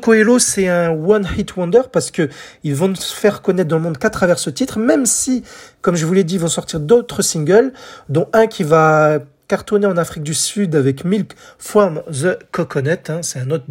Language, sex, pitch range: French, male, 150-205 Hz